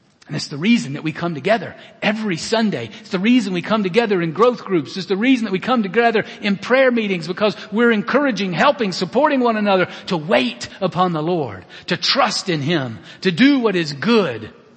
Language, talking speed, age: English, 205 wpm, 50-69